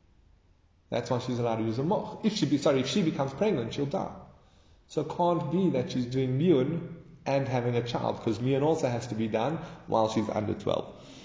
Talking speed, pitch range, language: 220 wpm, 110-155 Hz, English